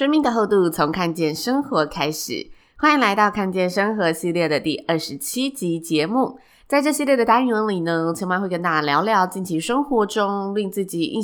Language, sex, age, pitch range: Chinese, female, 20-39, 160-220 Hz